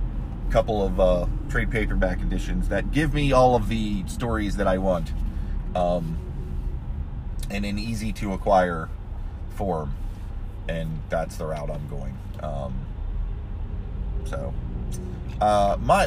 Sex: male